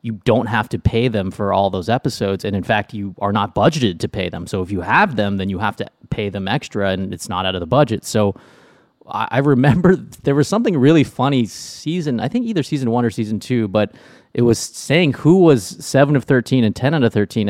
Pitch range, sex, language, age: 105-145 Hz, male, English, 20-39